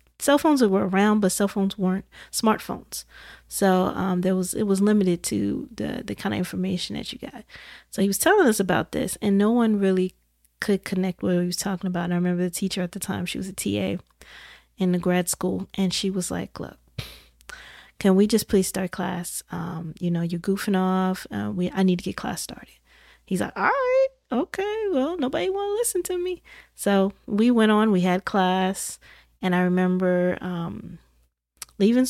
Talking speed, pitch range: 200 wpm, 180-205 Hz